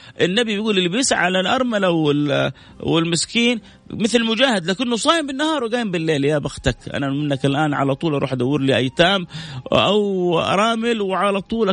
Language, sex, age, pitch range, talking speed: Arabic, male, 30-49, 125-175 Hz, 145 wpm